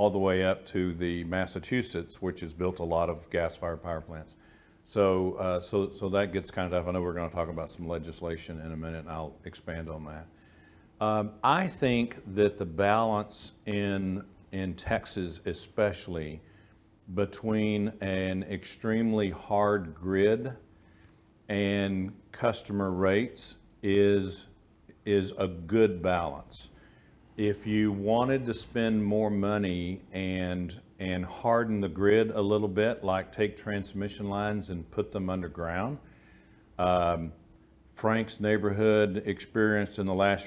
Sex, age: male, 50-69